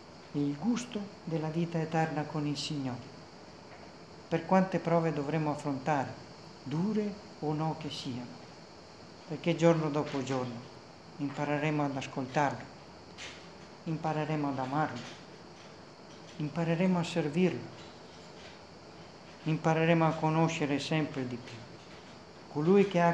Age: 40-59